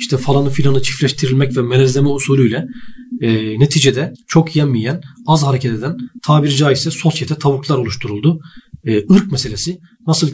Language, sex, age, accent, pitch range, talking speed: Turkish, male, 40-59, native, 130-170 Hz, 135 wpm